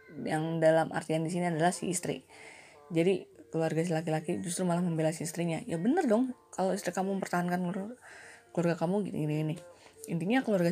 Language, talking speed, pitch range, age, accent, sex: Indonesian, 160 wpm, 170-235 Hz, 20-39, native, female